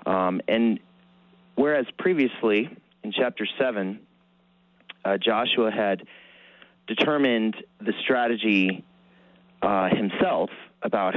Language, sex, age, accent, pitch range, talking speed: English, male, 30-49, American, 85-105 Hz, 80 wpm